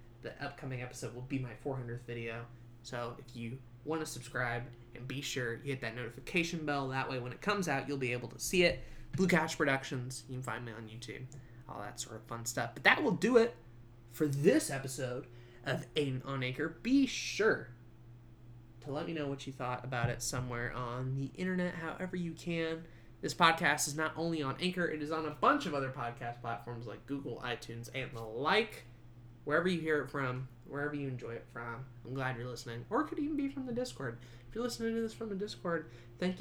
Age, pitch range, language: 20-39, 120-155 Hz, English